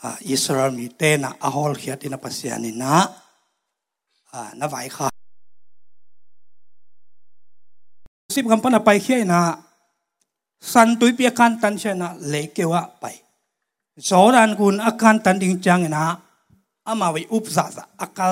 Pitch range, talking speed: 170-225 Hz, 90 wpm